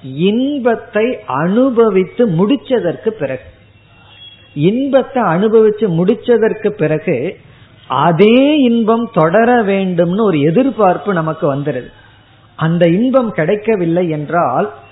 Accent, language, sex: native, Tamil, female